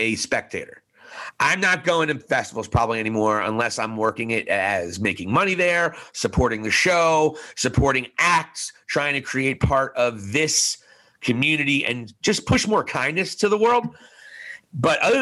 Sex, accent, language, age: male, American, English, 30-49